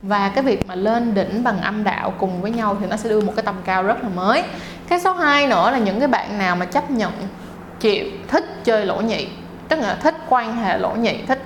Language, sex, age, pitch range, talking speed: Vietnamese, female, 20-39, 200-255 Hz, 250 wpm